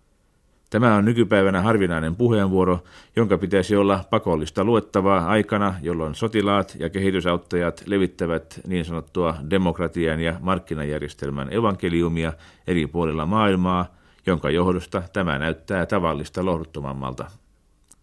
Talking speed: 105 wpm